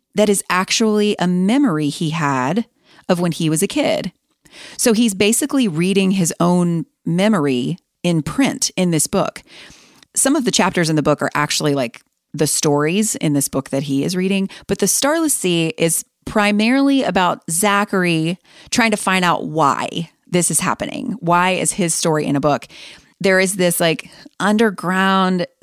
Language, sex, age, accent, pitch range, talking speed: English, female, 30-49, American, 165-220 Hz, 170 wpm